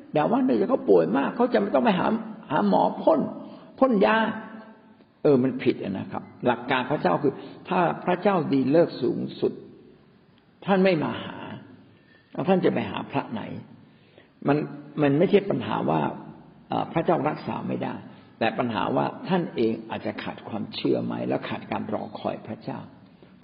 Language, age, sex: Thai, 60-79, male